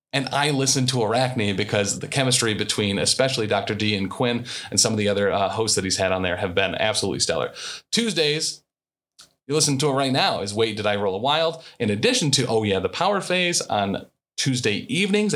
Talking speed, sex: 215 wpm, male